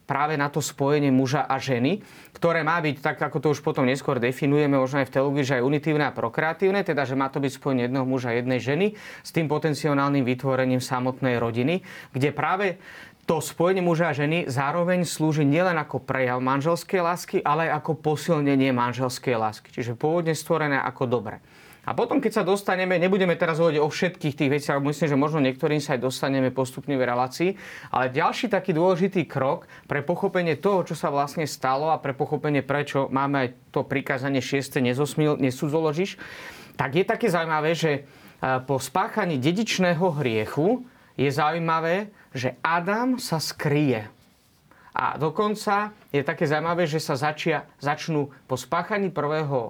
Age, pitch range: 30-49, 135-170 Hz